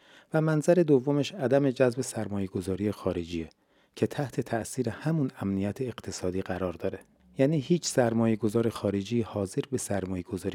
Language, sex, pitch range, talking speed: Persian, male, 95-120 Hz, 130 wpm